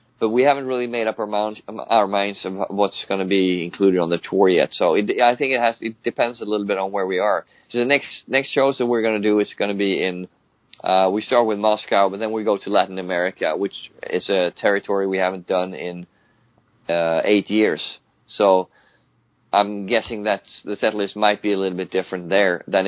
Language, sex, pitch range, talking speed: English, male, 95-115 Hz, 225 wpm